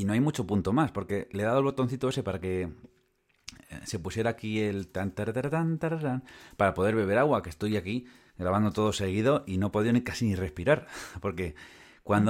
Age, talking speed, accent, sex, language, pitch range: 30-49, 190 wpm, Spanish, male, Spanish, 100-130 Hz